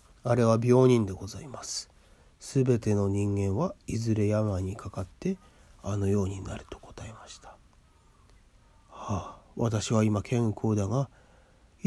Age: 30-49